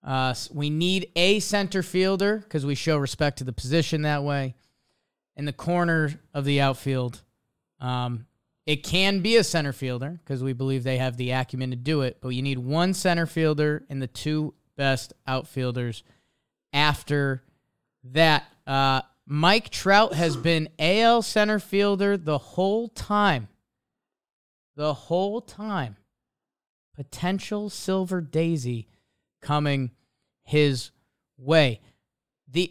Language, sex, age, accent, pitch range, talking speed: English, male, 20-39, American, 135-190 Hz, 130 wpm